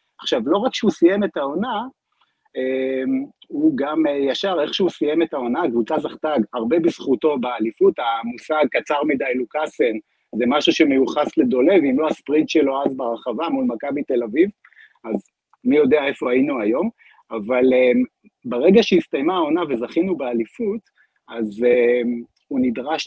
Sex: male